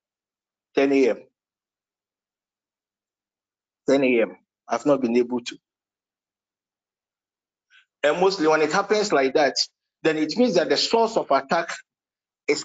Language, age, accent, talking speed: English, 50-69, Nigerian, 120 wpm